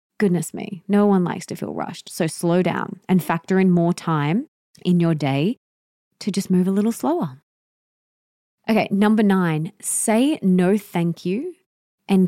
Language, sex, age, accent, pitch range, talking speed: English, female, 30-49, Australian, 165-210 Hz, 160 wpm